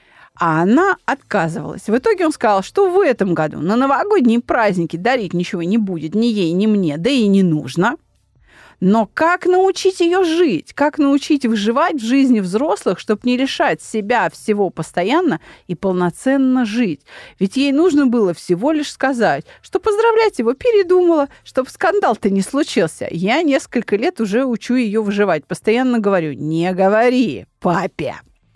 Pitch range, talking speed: 185-280 Hz, 155 wpm